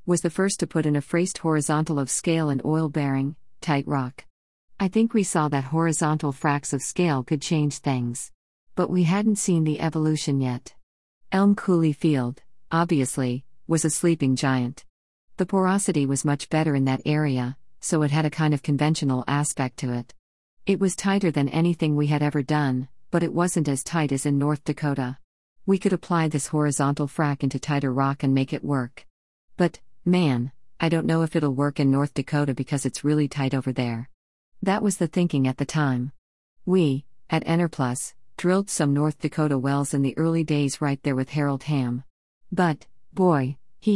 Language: English